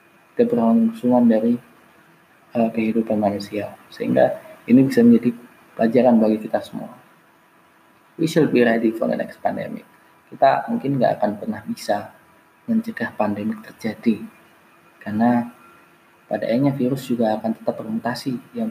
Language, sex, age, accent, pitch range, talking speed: Indonesian, male, 20-39, native, 110-120 Hz, 125 wpm